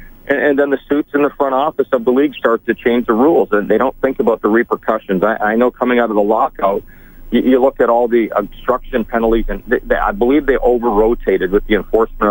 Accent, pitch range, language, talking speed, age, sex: American, 110-125 Hz, English, 220 wpm, 40-59, male